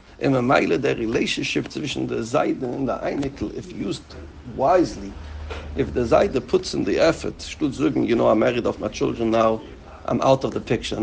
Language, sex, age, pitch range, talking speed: English, male, 60-79, 110-145 Hz, 185 wpm